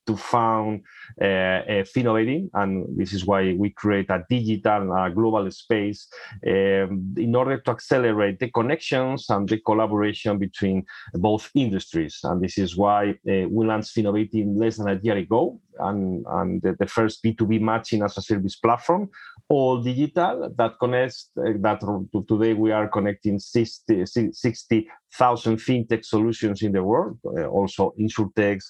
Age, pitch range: 30-49, 100-115 Hz